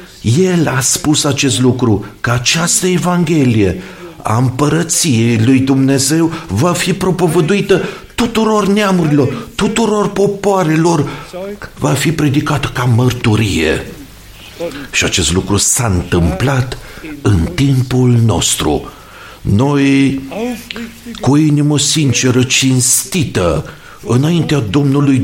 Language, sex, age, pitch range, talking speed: Romanian, male, 50-69, 135-175 Hz, 95 wpm